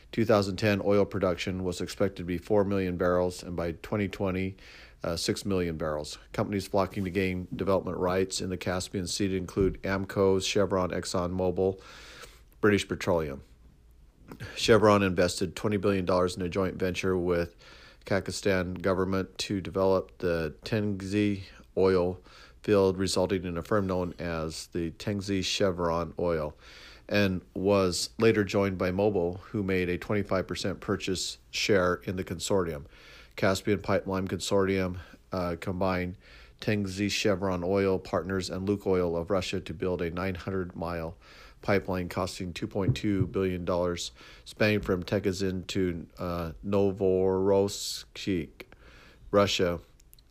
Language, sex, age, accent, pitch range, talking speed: English, male, 50-69, American, 90-100 Hz, 125 wpm